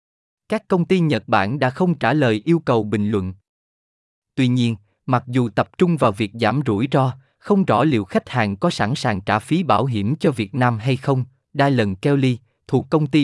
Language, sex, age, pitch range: Vietnamese, male, 20-39, 115-155 Hz